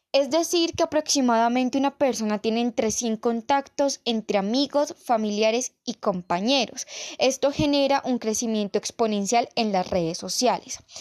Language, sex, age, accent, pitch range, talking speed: Spanish, female, 10-29, Colombian, 220-275 Hz, 130 wpm